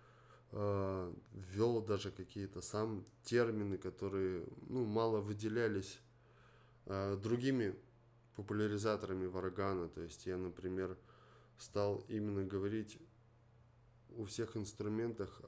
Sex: male